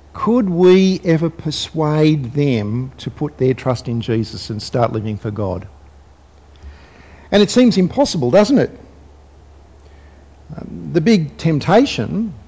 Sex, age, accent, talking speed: male, 50-69, Australian, 125 wpm